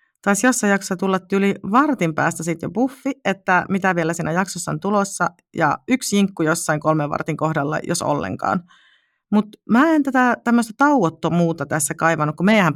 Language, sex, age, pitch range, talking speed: Finnish, female, 40-59, 160-205 Hz, 165 wpm